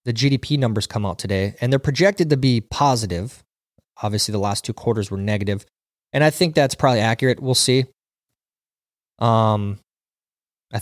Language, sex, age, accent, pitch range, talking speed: English, male, 20-39, American, 110-140 Hz, 160 wpm